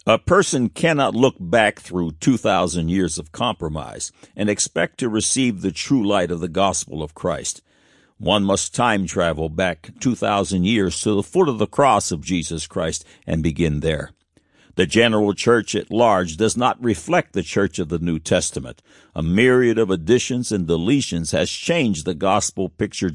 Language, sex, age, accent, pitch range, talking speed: English, male, 60-79, American, 90-125 Hz, 170 wpm